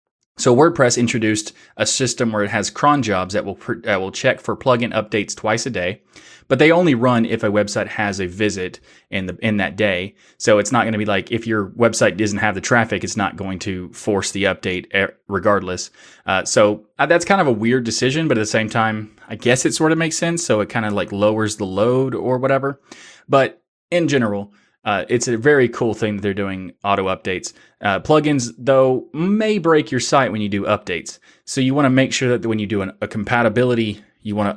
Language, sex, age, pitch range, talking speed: English, male, 20-39, 100-125 Hz, 230 wpm